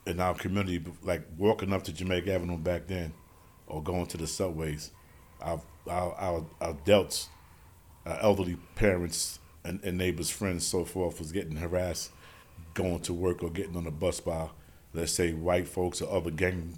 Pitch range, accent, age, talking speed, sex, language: 80-90 Hz, American, 40-59, 170 wpm, male, English